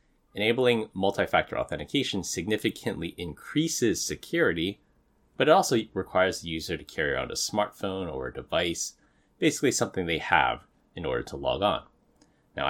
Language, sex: English, male